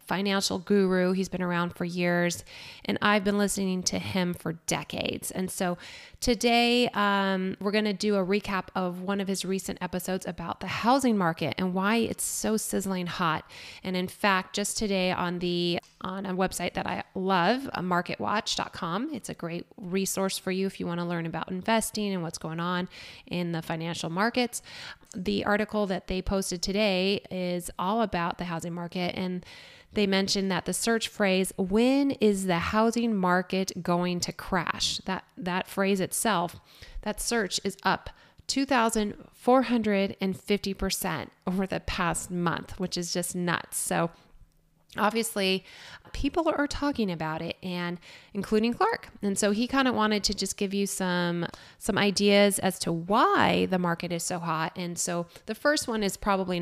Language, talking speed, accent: English, 165 wpm, American